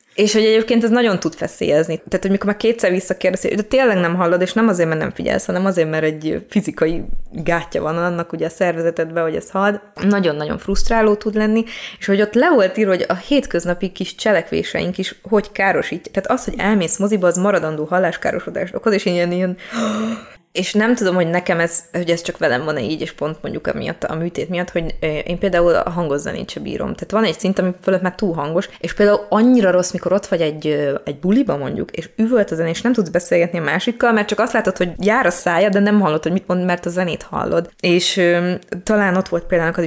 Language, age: Hungarian, 20-39